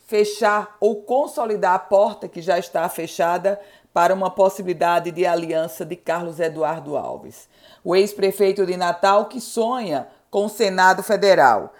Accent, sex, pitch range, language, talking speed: Brazilian, female, 185-225 Hz, Portuguese, 140 wpm